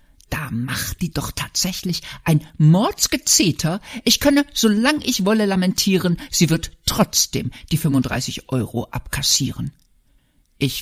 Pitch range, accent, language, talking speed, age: 145-230 Hz, German, German, 115 wpm, 60-79